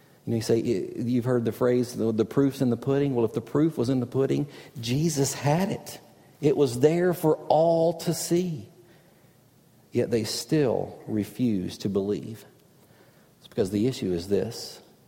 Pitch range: 110-140 Hz